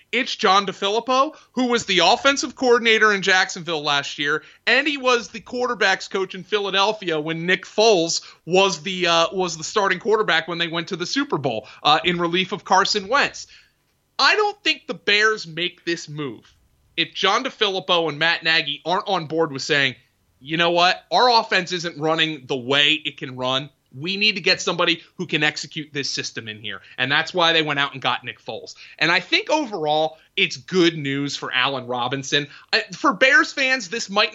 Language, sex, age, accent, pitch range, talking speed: English, male, 30-49, American, 155-220 Hz, 195 wpm